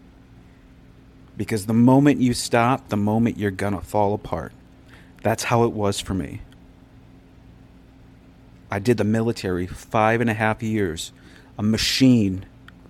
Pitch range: 105-125 Hz